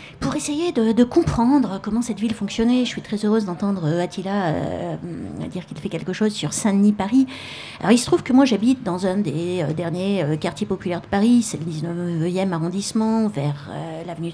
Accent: French